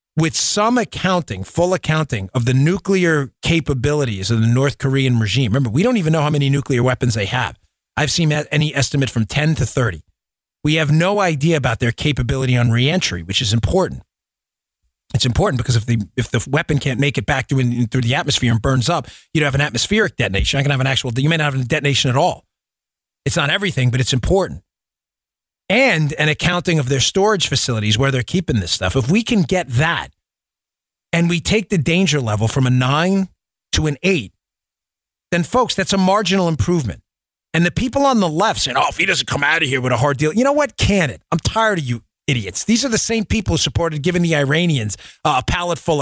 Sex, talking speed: male, 220 wpm